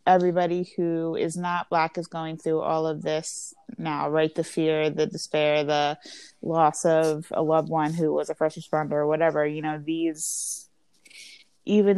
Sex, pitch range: female, 155-180 Hz